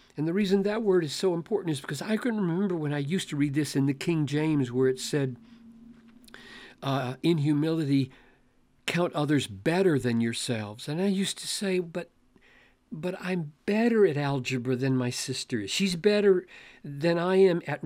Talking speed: 185 wpm